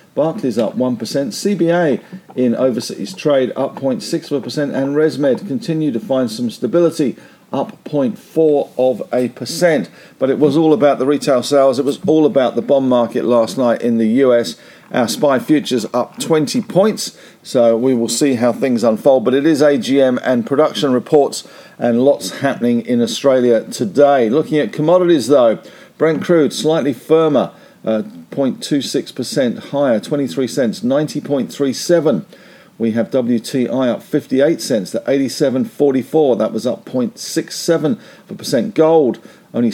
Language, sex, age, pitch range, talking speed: English, male, 50-69, 125-170 Hz, 145 wpm